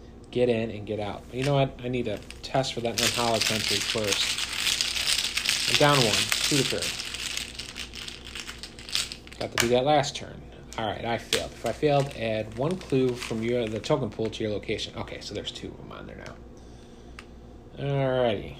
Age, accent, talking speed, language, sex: 30-49, American, 175 wpm, English, male